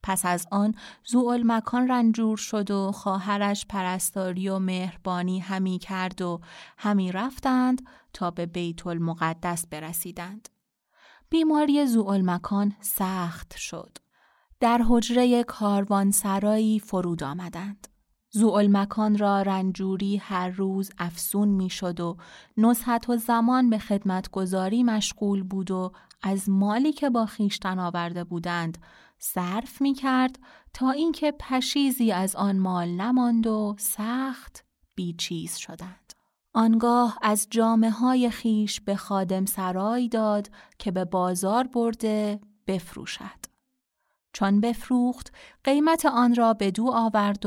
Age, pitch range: 20-39, 185-235 Hz